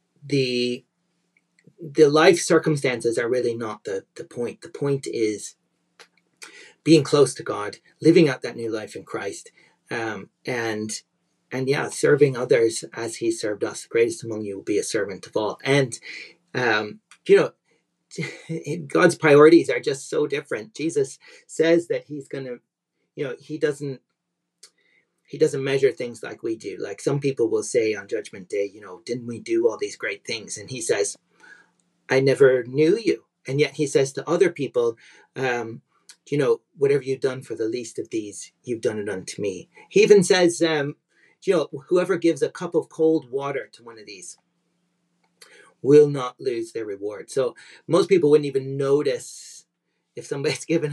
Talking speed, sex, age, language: 175 wpm, male, 40-59, English